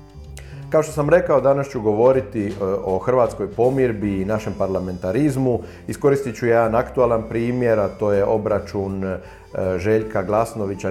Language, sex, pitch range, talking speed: Croatian, male, 100-115 Hz, 130 wpm